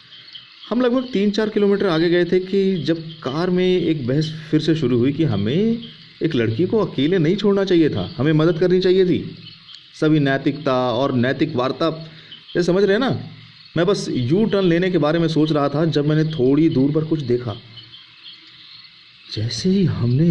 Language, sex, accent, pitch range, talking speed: Hindi, male, native, 120-175 Hz, 190 wpm